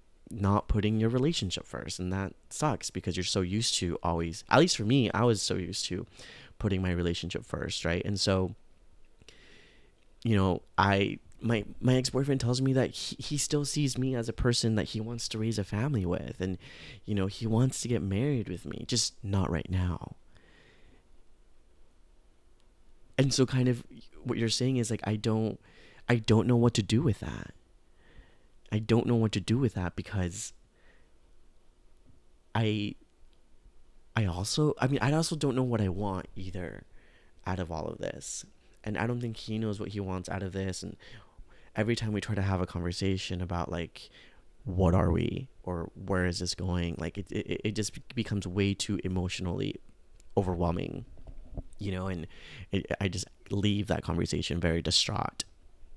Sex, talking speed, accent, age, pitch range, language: male, 180 wpm, American, 30-49, 90-115 Hz, English